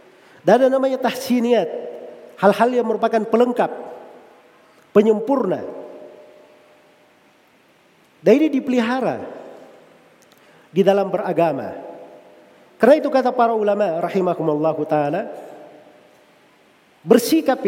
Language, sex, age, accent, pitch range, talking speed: Indonesian, male, 50-69, native, 200-275 Hz, 75 wpm